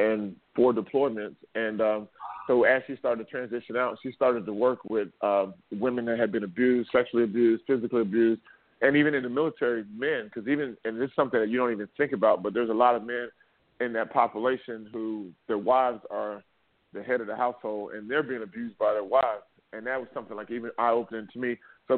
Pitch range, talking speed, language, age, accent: 110-130 Hz, 220 wpm, English, 40-59, American